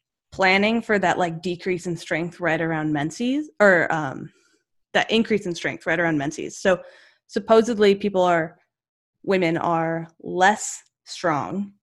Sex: female